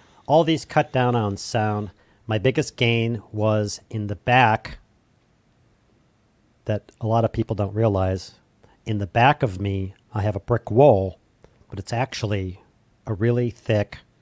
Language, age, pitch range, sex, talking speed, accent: English, 50-69, 100-115 Hz, male, 150 wpm, American